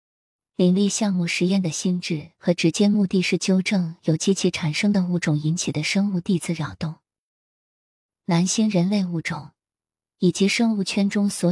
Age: 20-39